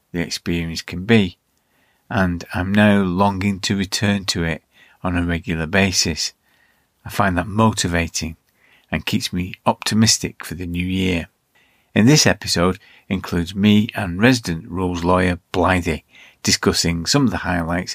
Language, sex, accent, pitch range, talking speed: English, male, British, 85-110 Hz, 145 wpm